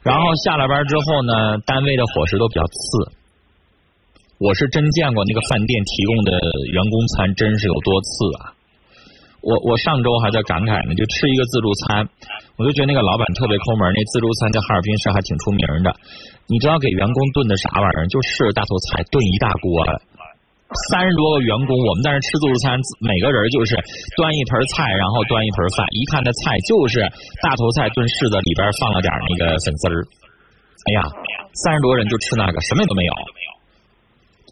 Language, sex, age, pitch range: Chinese, male, 20-39, 100-140 Hz